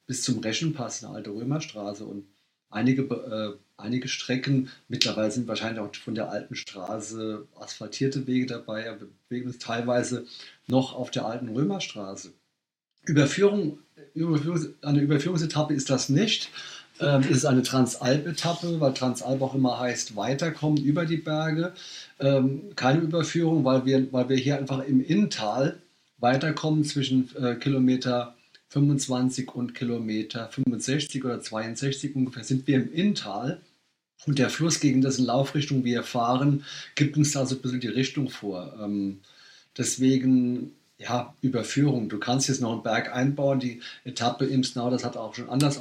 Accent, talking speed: German, 145 wpm